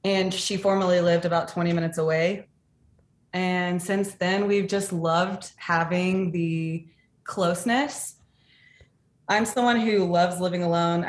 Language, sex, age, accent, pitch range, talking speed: English, female, 20-39, American, 170-225 Hz, 125 wpm